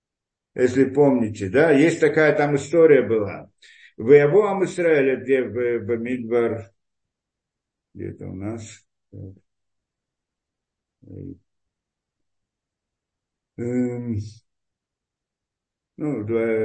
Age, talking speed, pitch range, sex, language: 50-69, 60 wpm, 115-165 Hz, male, Russian